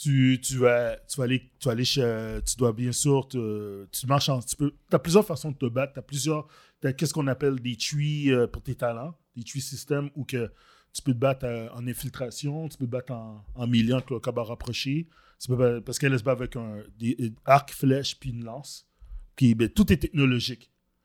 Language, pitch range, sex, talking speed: French, 120-140 Hz, male, 220 wpm